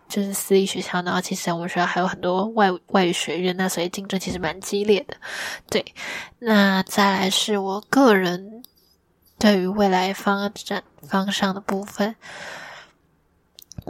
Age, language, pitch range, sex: 10-29, Chinese, 185-215 Hz, female